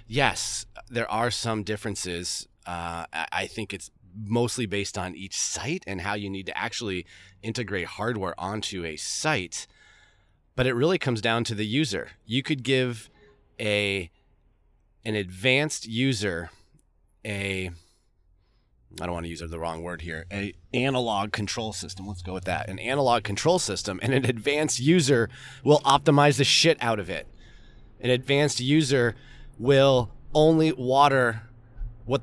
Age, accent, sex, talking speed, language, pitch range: 30-49, American, male, 150 wpm, English, 95-130 Hz